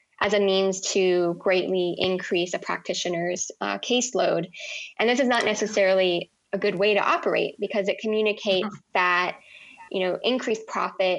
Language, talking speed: English, 150 wpm